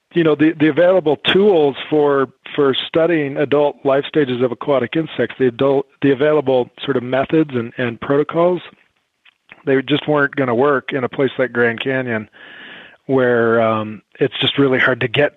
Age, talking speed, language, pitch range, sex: 40-59, 175 wpm, English, 125-145 Hz, male